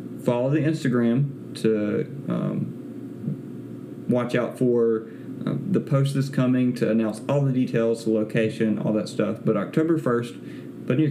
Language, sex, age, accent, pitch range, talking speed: English, male, 30-49, American, 110-140 Hz, 145 wpm